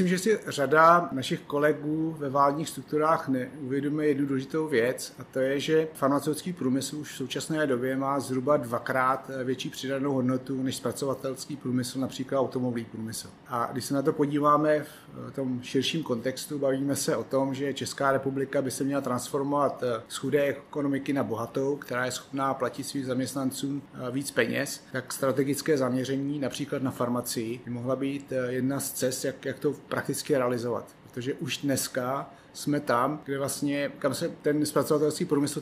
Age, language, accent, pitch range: 30-49, Czech, native, 130-145 Hz